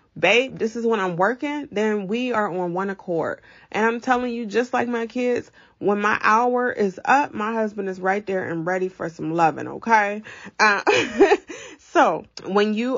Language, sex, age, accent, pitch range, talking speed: English, female, 30-49, American, 165-220 Hz, 185 wpm